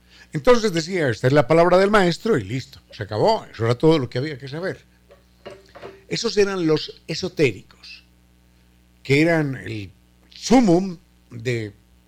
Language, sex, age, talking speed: Spanish, male, 60-79, 145 wpm